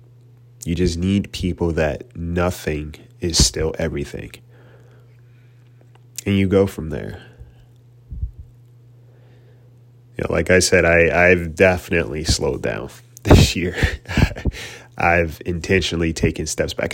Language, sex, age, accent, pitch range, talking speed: English, male, 30-49, American, 85-120 Hz, 115 wpm